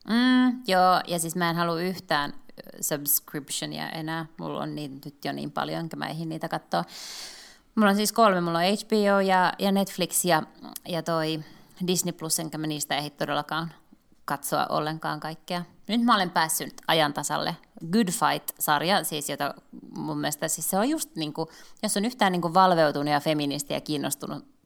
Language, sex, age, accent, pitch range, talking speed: Finnish, female, 20-39, native, 150-195 Hz, 175 wpm